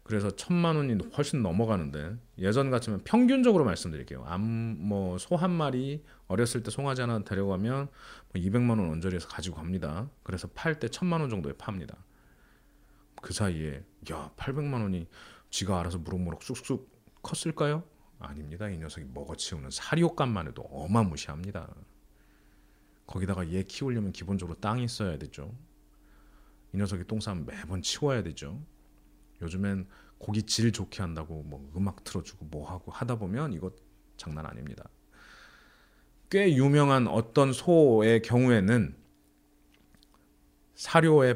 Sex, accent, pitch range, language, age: male, native, 85-130 Hz, Korean, 40-59